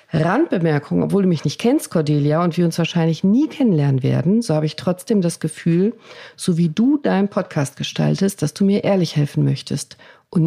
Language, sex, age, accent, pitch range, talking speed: German, female, 40-59, German, 145-185 Hz, 190 wpm